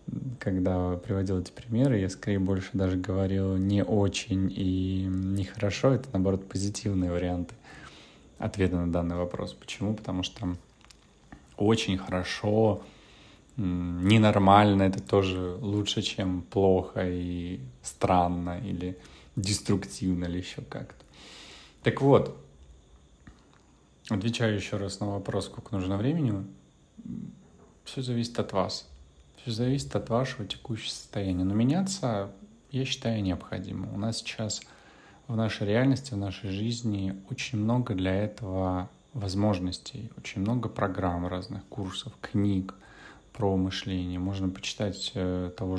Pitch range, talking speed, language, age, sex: 90-110 Hz, 115 wpm, Russian, 20-39, male